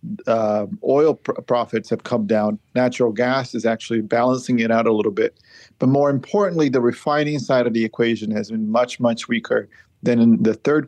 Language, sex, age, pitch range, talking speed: English, male, 40-59, 115-140 Hz, 195 wpm